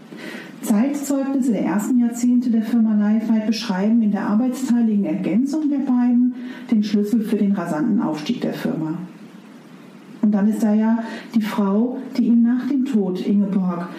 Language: German